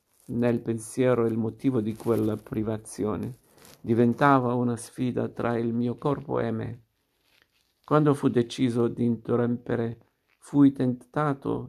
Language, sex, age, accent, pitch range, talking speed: Italian, male, 50-69, native, 120-135 Hz, 120 wpm